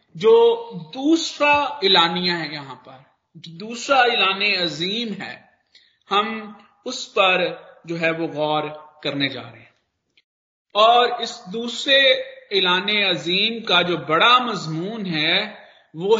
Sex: male